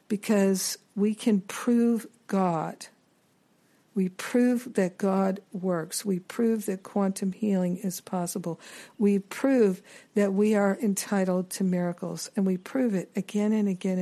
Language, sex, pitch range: English, female, 185-220 Hz